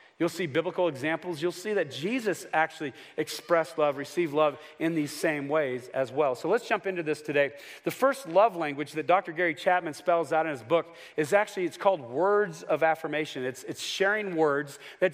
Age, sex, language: 40-59, male, English